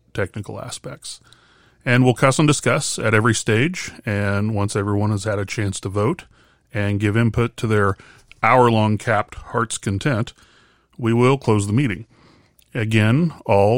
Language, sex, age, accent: English, male, 30-49, American